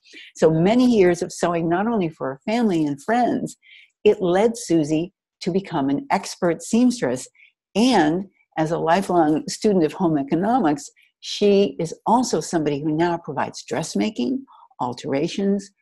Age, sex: 60-79, female